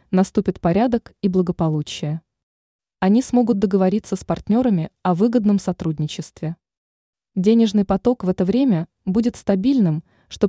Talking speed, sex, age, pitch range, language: 115 wpm, female, 20-39, 165-220 Hz, Russian